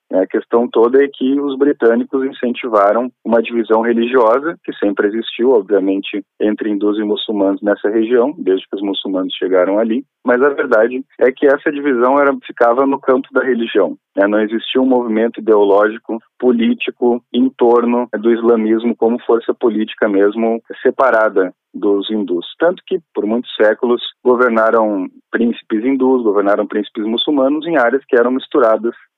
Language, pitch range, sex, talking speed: Portuguese, 105-130 Hz, male, 150 wpm